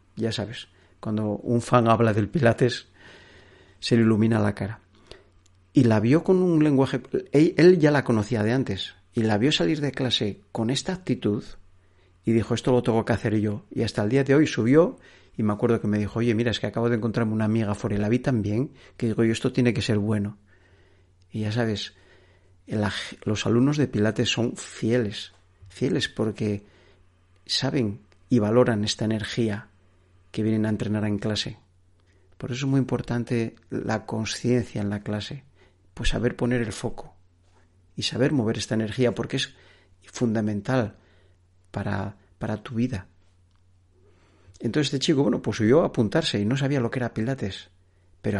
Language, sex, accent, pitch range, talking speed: Spanish, male, Spanish, 95-125 Hz, 175 wpm